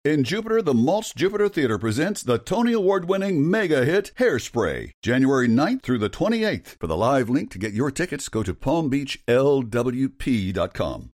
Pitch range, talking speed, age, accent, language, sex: 95-140 Hz, 150 wpm, 60-79, American, English, male